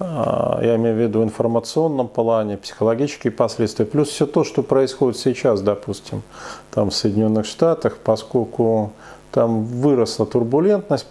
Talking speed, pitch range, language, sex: 120 wpm, 110-145 Hz, Russian, male